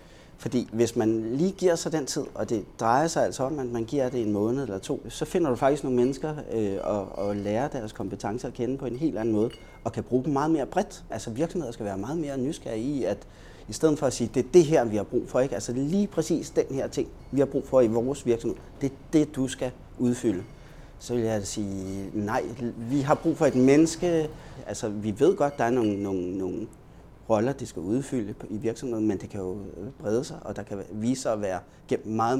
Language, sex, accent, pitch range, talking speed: Danish, male, native, 110-140 Hz, 245 wpm